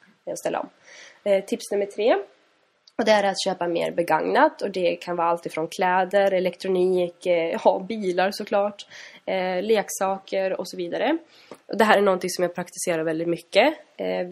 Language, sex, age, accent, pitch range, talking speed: Swedish, female, 20-39, native, 170-205 Hz, 165 wpm